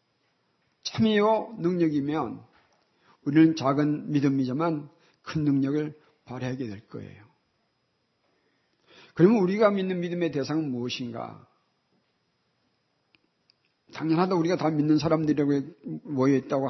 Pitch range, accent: 135-175 Hz, native